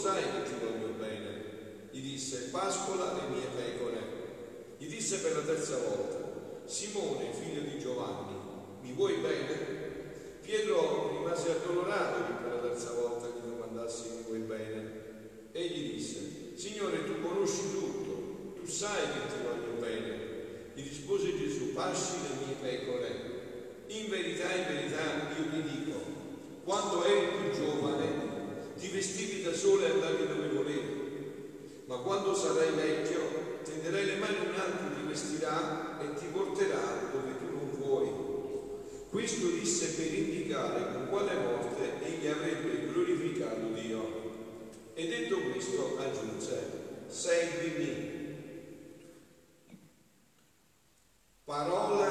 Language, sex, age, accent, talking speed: Italian, male, 50-69, native, 130 wpm